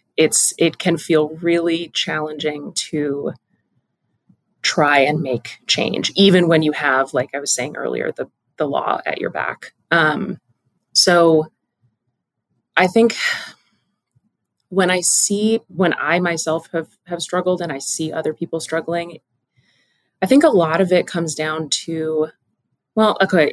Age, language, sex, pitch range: 30-49, English, female, 150-185 Hz